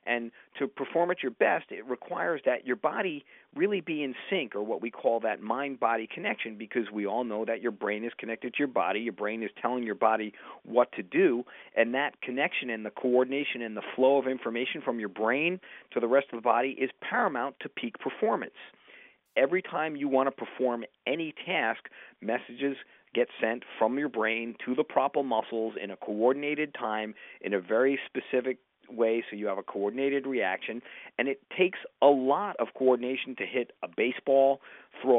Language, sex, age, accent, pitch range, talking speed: English, male, 40-59, American, 115-135 Hz, 195 wpm